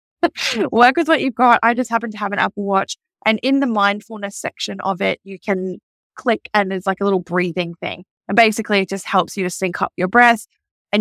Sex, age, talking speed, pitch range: female, 10-29, 230 wpm, 185-255 Hz